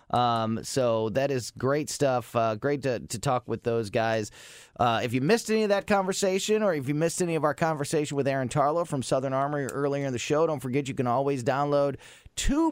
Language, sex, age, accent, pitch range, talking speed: English, male, 30-49, American, 115-150 Hz, 225 wpm